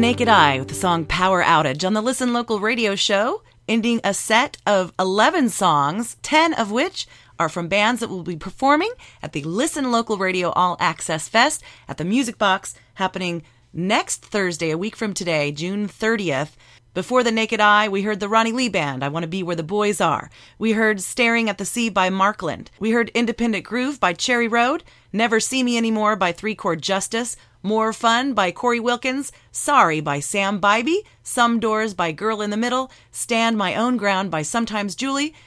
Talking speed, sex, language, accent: 195 wpm, female, English, American